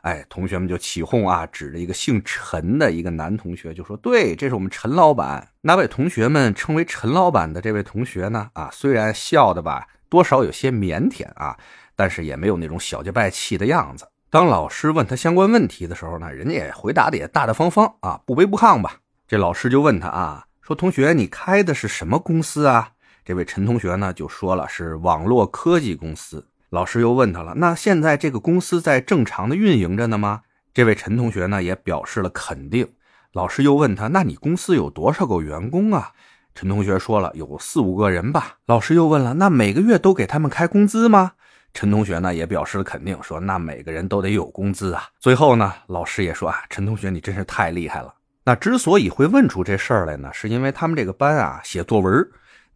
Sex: male